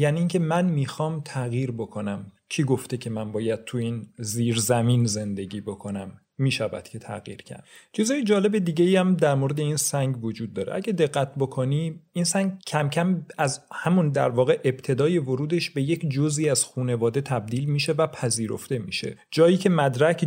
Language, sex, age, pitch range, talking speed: Persian, male, 40-59, 120-155 Hz, 165 wpm